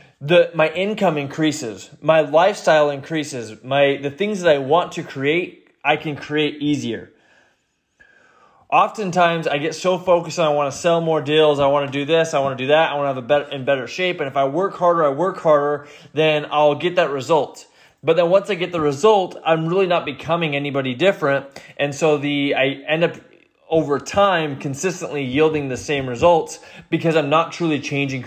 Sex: male